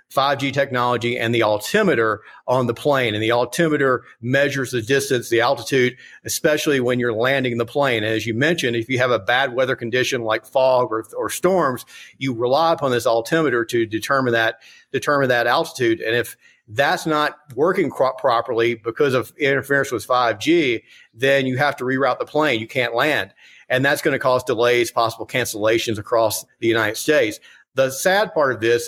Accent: American